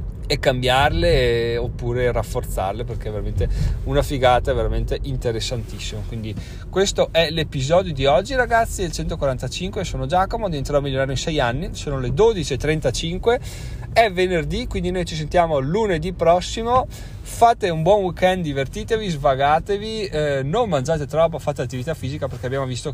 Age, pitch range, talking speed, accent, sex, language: 30-49, 115-155 Hz, 145 wpm, native, male, Italian